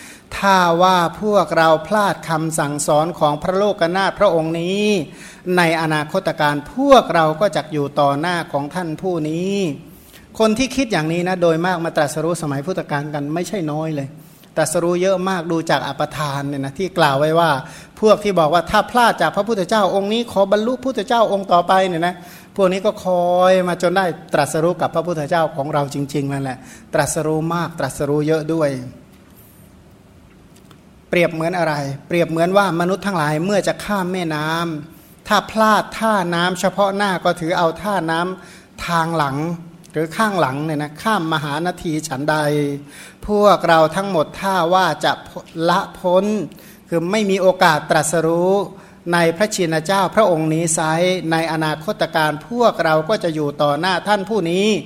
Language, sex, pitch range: Thai, male, 155-190 Hz